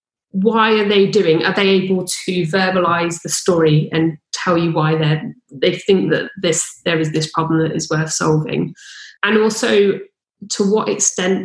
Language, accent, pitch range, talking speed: English, British, 165-195 Hz, 170 wpm